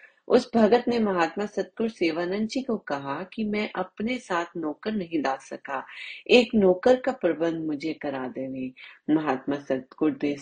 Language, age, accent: Hindi, 30-49, native